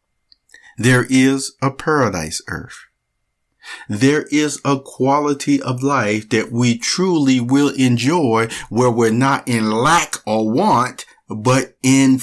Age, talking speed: 50-69, 125 wpm